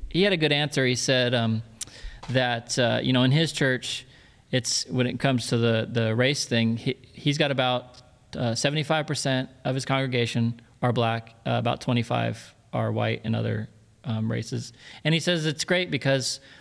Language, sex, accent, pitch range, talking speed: English, male, American, 115-140 Hz, 185 wpm